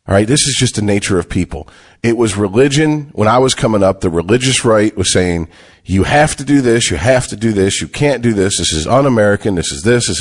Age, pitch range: 40-59, 90-130 Hz